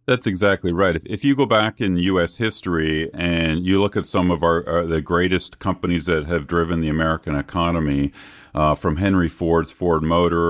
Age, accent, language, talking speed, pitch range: 40-59, American, English, 190 wpm, 85-100 Hz